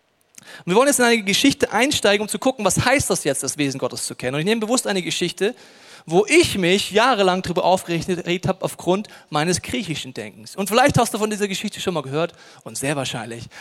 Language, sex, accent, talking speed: German, male, German, 215 wpm